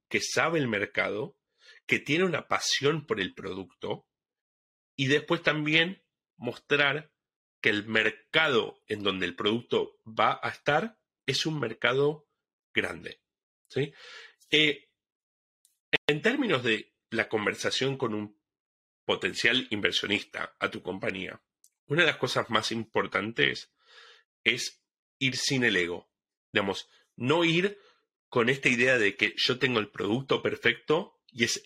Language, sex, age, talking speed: Spanish, male, 30-49, 130 wpm